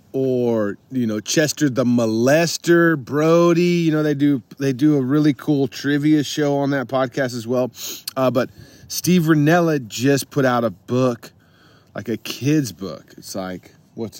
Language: English